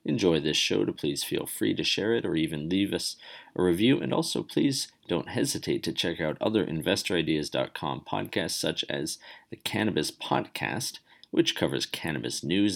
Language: English